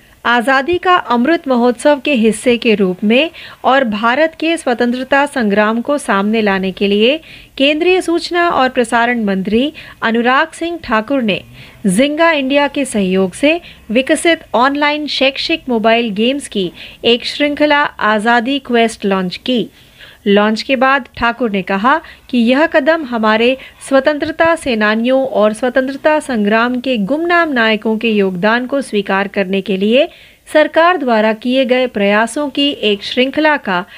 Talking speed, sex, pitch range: 140 wpm, female, 215-290 Hz